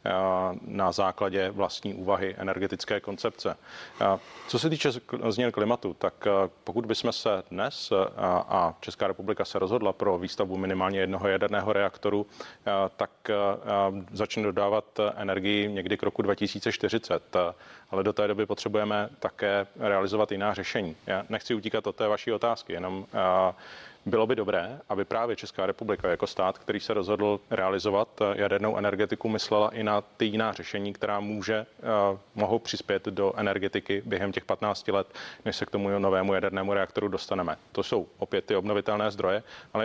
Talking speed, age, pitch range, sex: 150 wpm, 30-49, 95-110 Hz, male